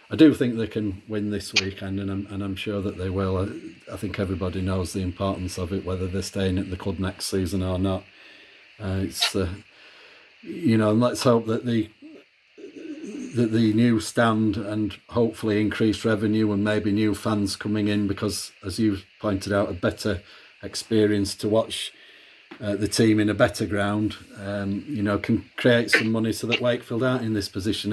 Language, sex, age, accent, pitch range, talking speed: English, male, 40-59, British, 100-110 Hz, 195 wpm